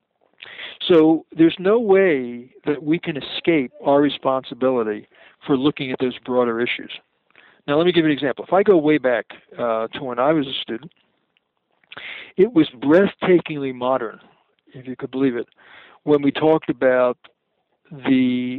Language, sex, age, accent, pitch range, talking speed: English, male, 60-79, American, 135-180 Hz, 160 wpm